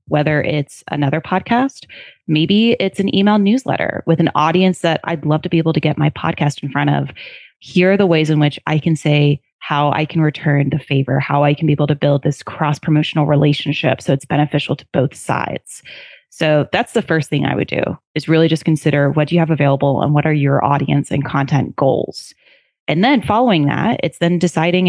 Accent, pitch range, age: American, 145-175 Hz, 20-39